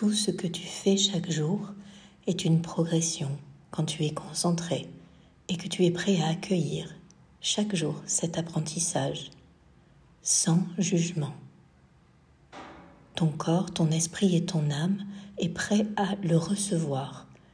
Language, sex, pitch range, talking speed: French, female, 155-185 Hz, 135 wpm